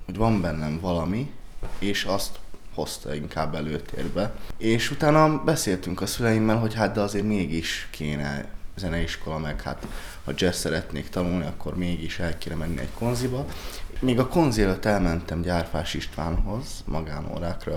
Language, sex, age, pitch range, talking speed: Hungarian, male, 20-39, 75-100 Hz, 140 wpm